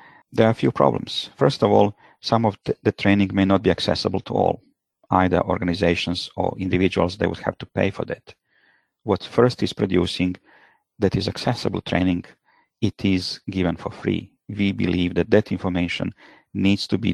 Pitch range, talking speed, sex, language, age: 90-105 Hz, 175 wpm, male, English, 50-69